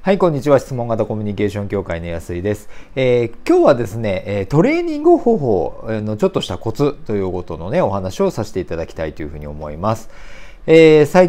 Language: Japanese